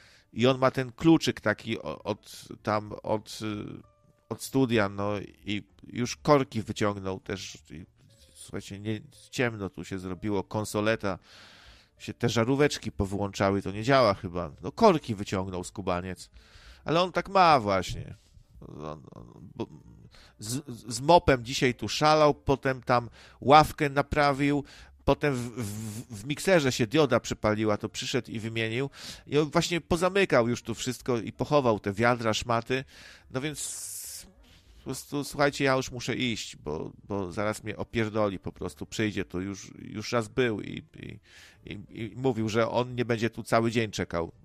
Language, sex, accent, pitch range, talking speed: Polish, male, native, 100-130 Hz, 150 wpm